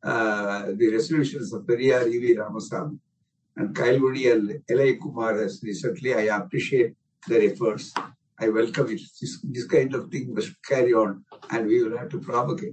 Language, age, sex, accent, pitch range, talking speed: Tamil, 60-79, male, native, 135-180 Hz, 165 wpm